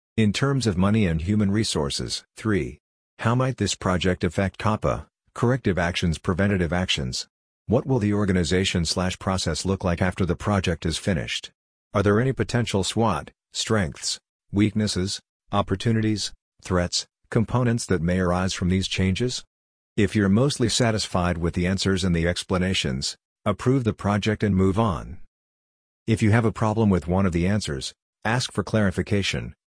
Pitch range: 90-105 Hz